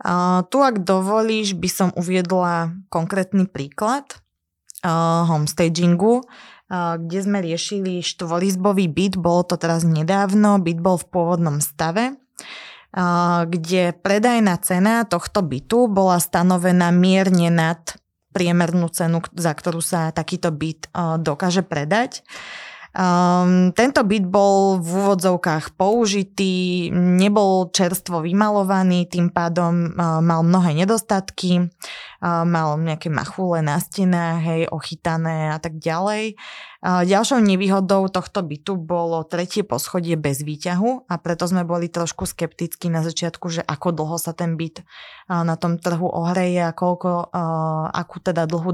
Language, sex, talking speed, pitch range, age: Slovak, female, 125 wpm, 165-195 Hz, 20-39